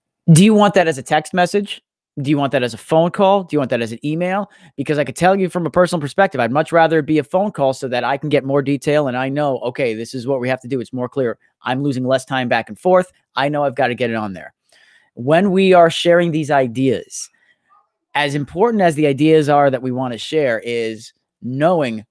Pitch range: 115-155 Hz